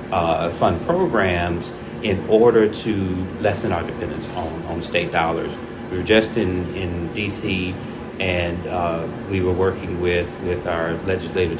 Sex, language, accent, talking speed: male, English, American, 145 wpm